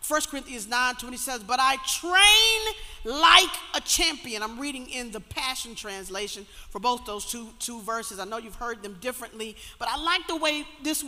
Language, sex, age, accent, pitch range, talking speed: English, female, 40-59, American, 260-380 Hz, 190 wpm